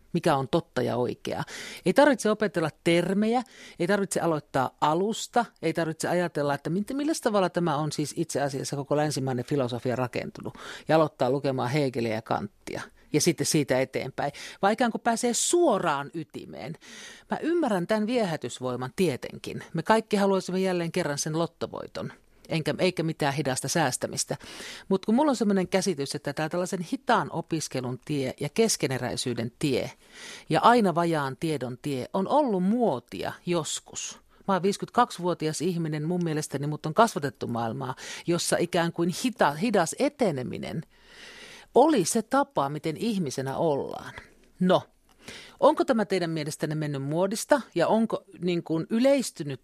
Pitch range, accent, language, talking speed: 145-195 Hz, native, Finnish, 140 wpm